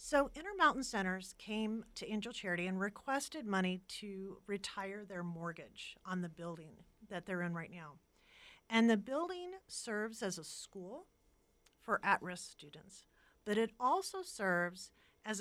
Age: 40-59